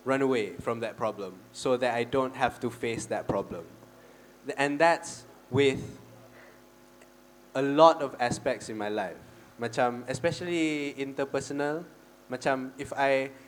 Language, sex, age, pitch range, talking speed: English, male, 20-39, 110-135 Hz, 125 wpm